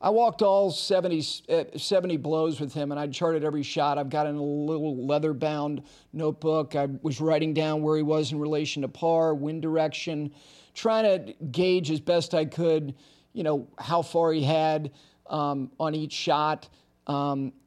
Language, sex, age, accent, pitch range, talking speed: English, male, 40-59, American, 150-200 Hz, 175 wpm